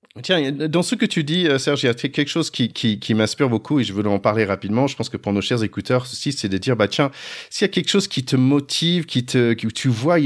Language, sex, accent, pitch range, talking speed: French, male, French, 100-140 Hz, 290 wpm